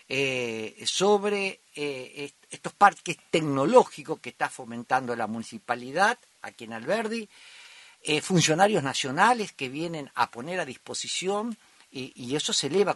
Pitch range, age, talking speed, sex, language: 135-210 Hz, 50-69, 130 wpm, male, Spanish